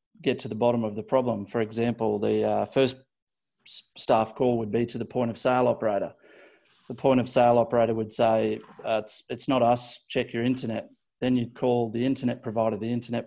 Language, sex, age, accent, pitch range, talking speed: English, male, 30-49, Australian, 115-125 Hz, 210 wpm